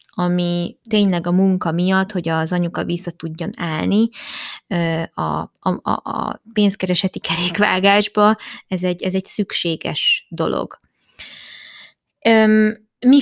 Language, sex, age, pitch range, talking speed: Hungarian, female, 20-39, 175-200 Hz, 105 wpm